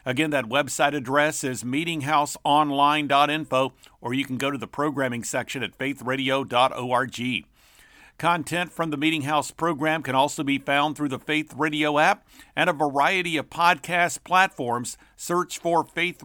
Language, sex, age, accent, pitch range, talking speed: English, male, 50-69, American, 135-160 Hz, 150 wpm